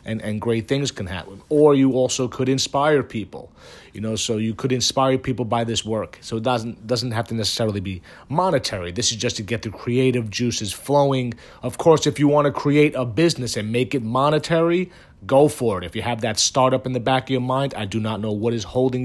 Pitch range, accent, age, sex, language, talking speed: 105-130 Hz, American, 30-49, male, English, 235 wpm